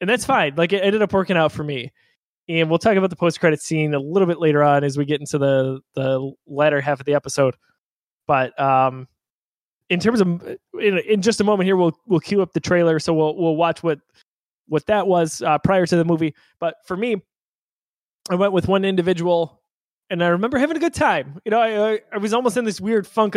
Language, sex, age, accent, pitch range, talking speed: English, male, 20-39, American, 155-195 Hz, 230 wpm